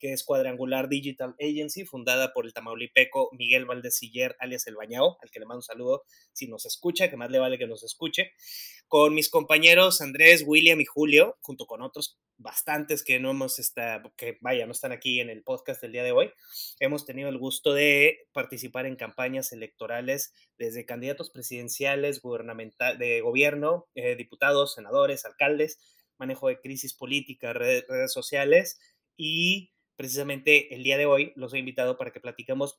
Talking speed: 175 wpm